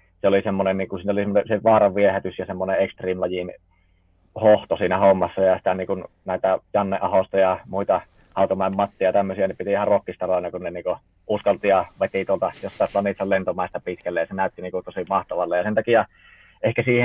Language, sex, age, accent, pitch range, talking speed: Finnish, male, 30-49, native, 95-110 Hz, 190 wpm